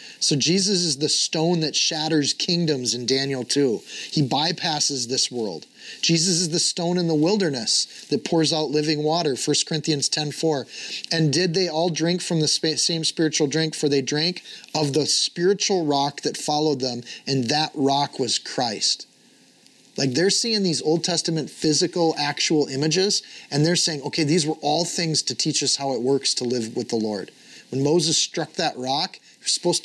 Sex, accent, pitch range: male, American, 135-170 Hz